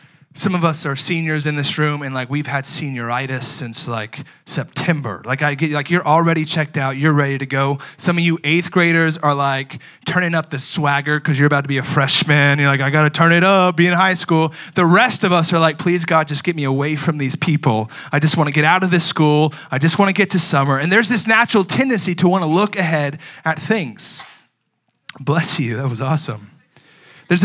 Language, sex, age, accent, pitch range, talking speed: English, male, 20-39, American, 135-170 Hz, 235 wpm